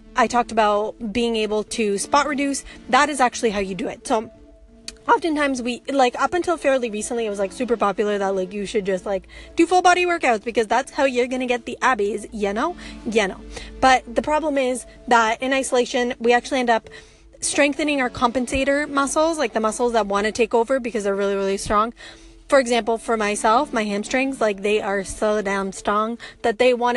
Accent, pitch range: American, 215-265 Hz